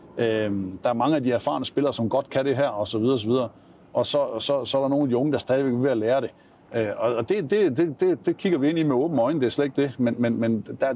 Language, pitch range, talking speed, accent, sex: Danish, 105-135 Hz, 320 wpm, native, male